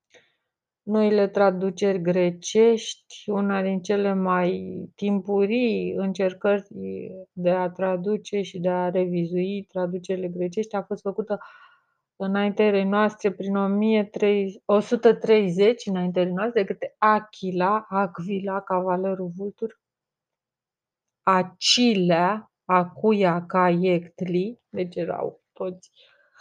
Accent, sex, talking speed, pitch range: native, female, 90 wpm, 185-210 Hz